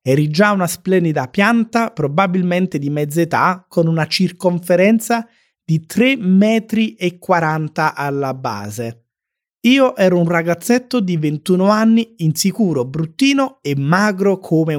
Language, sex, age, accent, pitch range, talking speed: Italian, male, 30-49, native, 140-195 Hz, 120 wpm